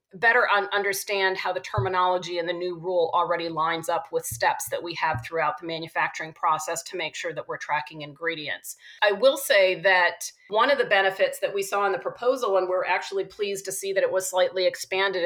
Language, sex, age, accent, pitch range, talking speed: English, female, 40-59, American, 180-210 Hz, 210 wpm